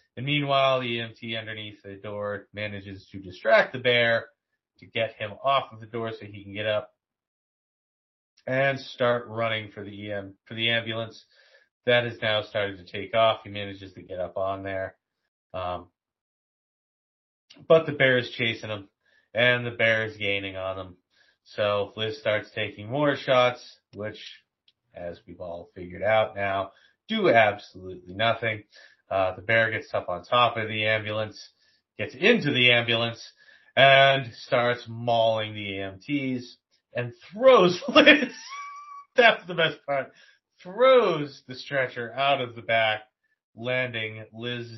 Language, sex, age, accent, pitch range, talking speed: English, male, 30-49, American, 100-130 Hz, 150 wpm